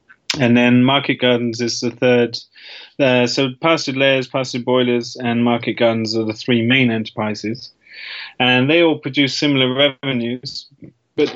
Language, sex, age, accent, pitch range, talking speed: English, male, 30-49, British, 115-130 Hz, 150 wpm